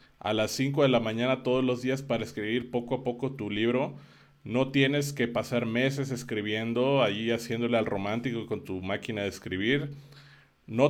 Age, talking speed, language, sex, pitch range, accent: 30-49, 175 wpm, Spanish, male, 110-135 Hz, Mexican